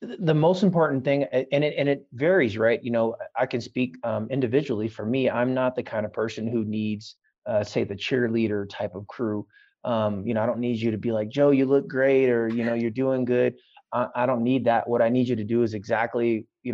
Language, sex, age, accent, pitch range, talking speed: English, male, 30-49, American, 105-120 Hz, 245 wpm